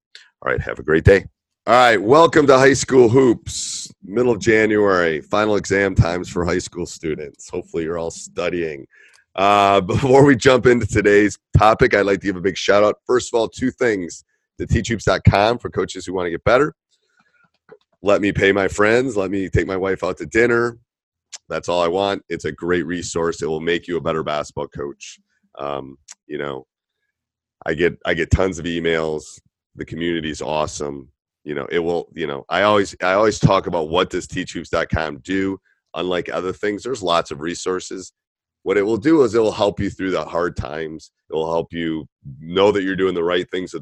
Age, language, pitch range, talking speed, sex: 30-49, English, 85-105 Hz, 200 wpm, male